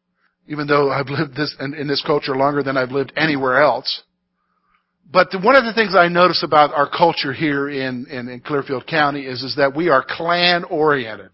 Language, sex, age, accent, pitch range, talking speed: English, male, 50-69, American, 150-220 Hz, 190 wpm